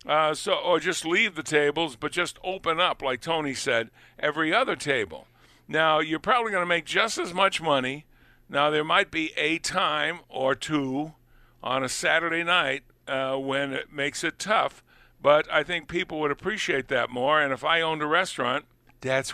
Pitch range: 130-160 Hz